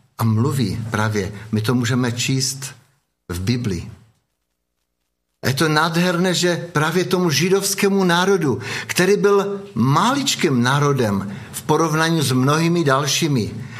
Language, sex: Czech, male